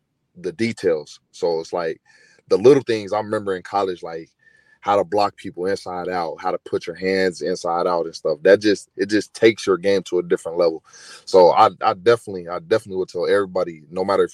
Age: 20-39